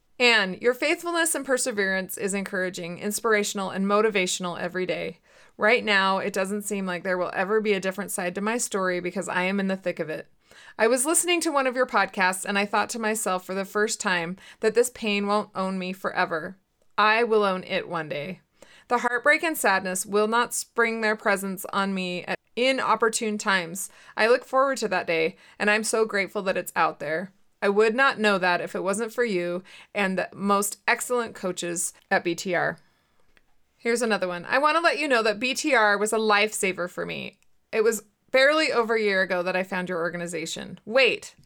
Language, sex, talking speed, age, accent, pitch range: English, female, 200 wpm, 20-39, American, 185-235 Hz